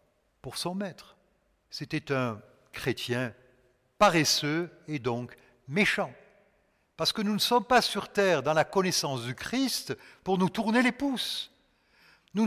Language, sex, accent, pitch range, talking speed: French, male, French, 140-205 Hz, 140 wpm